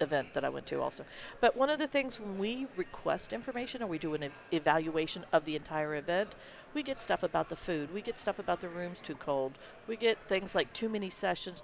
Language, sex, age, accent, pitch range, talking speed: English, female, 50-69, American, 185-240 Hz, 230 wpm